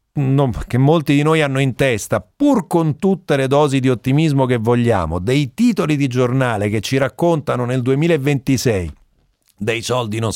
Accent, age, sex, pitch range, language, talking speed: native, 40-59, male, 110-140 Hz, Italian, 160 wpm